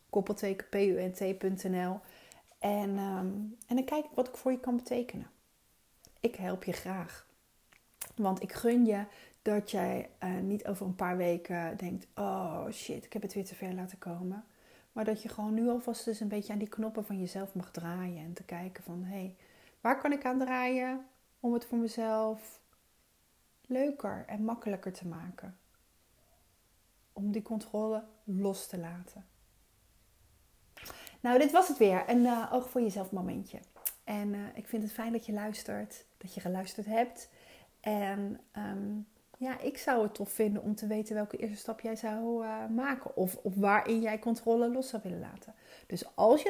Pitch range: 195-235 Hz